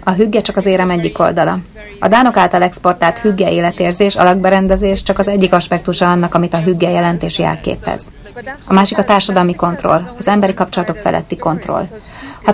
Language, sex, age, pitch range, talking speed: Hungarian, female, 30-49, 170-195 Hz, 165 wpm